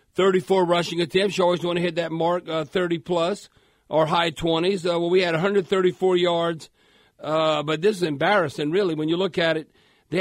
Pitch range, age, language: 165-210 Hz, 50-69, English